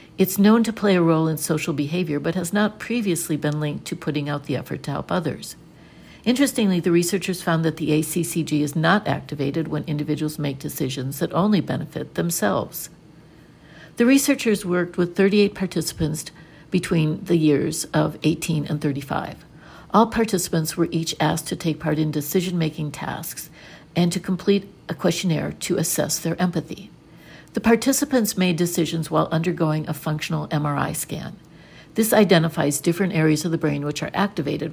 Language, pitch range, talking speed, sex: English, 155-180 Hz, 160 wpm, female